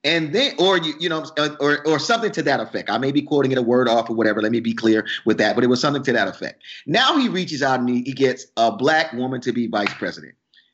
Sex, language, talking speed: male, English, 275 wpm